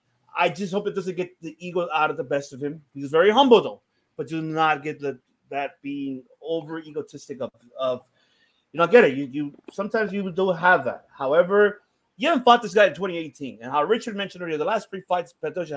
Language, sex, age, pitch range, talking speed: English, male, 30-49, 135-180 Hz, 220 wpm